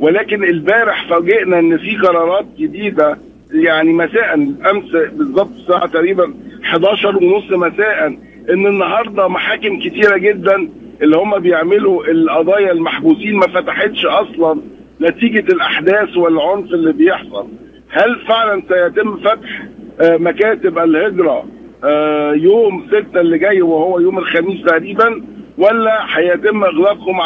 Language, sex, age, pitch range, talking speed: Arabic, male, 50-69, 170-225 Hz, 110 wpm